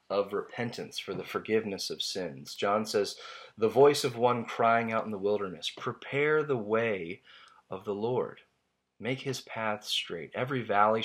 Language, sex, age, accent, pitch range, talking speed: English, male, 30-49, American, 85-115 Hz, 165 wpm